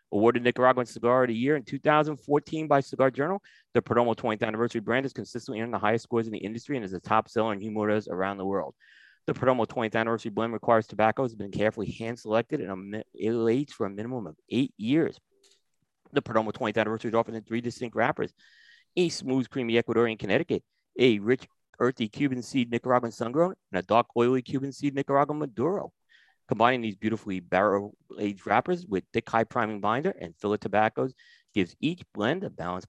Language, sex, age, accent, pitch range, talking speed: English, male, 30-49, American, 105-125 Hz, 185 wpm